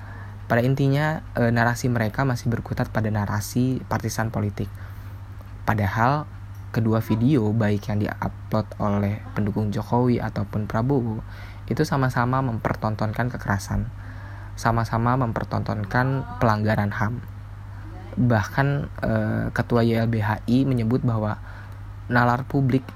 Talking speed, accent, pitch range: 95 wpm, native, 100-120 Hz